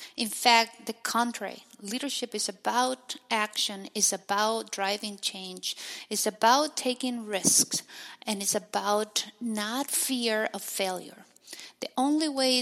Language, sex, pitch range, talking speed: English, female, 200-245 Hz, 125 wpm